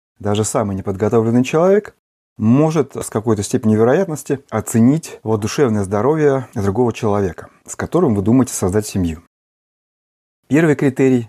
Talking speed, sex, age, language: 120 wpm, male, 30-49, Russian